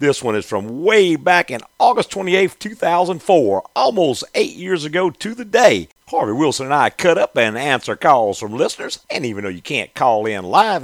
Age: 50-69